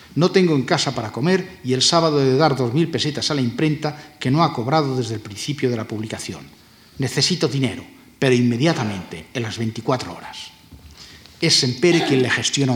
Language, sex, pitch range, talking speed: Spanish, male, 115-140 Hz, 190 wpm